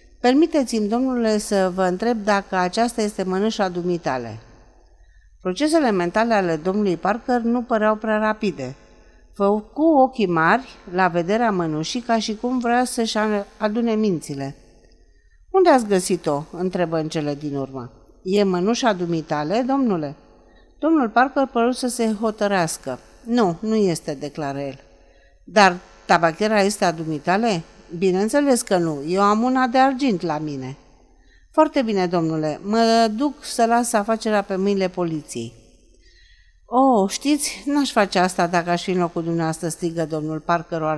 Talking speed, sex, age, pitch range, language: 140 wpm, female, 50-69, 165-230 Hz, Romanian